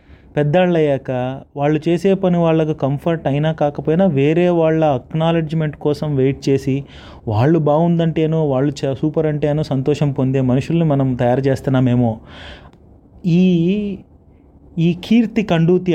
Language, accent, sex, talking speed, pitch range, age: Telugu, native, male, 115 wpm, 135-175 Hz, 30-49